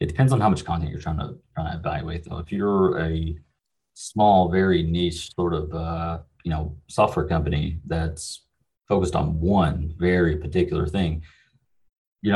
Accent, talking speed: American, 170 wpm